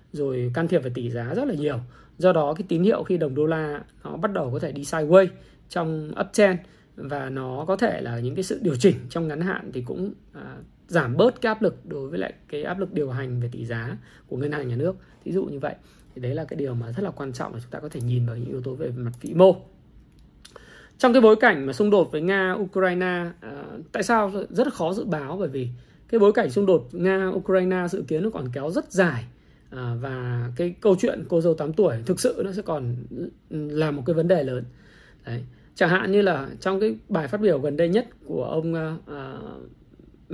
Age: 20-39